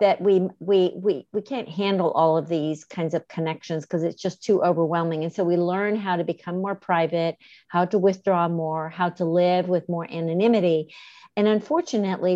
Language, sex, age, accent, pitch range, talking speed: English, female, 50-69, American, 165-200 Hz, 180 wpm